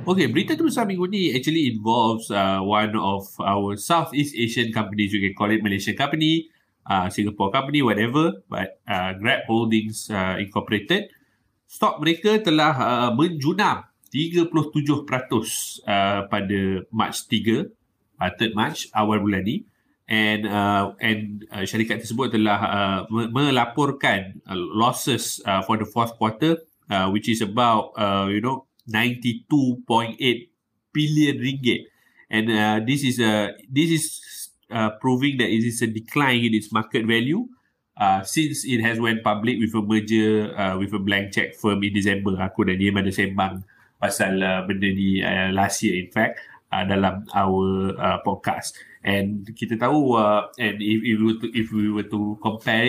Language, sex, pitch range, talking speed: Malay, male, 100-125 Hz, 160 wpm